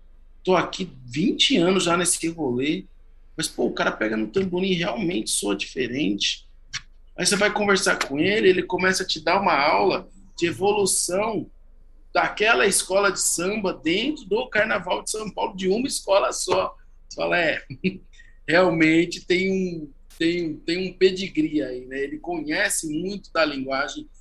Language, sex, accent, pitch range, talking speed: Portuguese, male, Brazilian, 170-230 Hz, 155 wpm